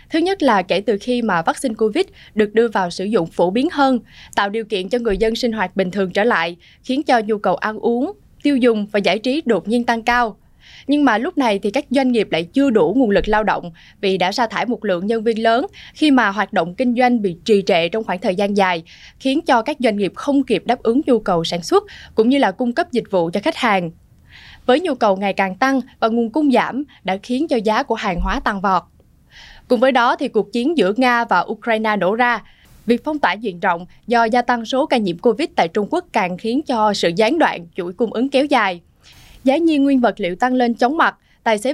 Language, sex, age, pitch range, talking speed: Vietnamese, female, 10-29, 205-265 Hz, 250 wpm